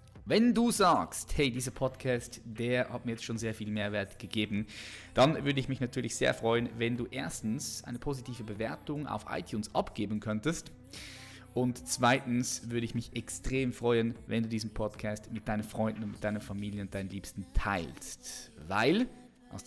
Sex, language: male, German